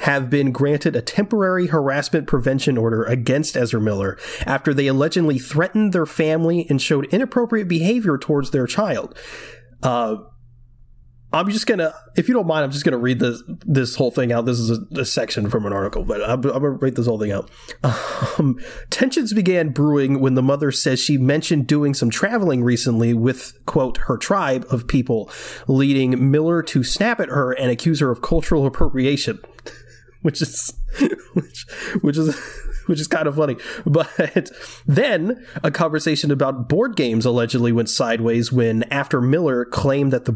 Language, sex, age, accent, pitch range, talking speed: English, male, 30-49, American, 125-155 Hz, 175 wpm